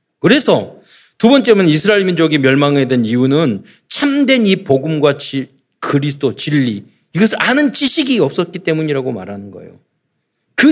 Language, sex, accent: Korean, male, native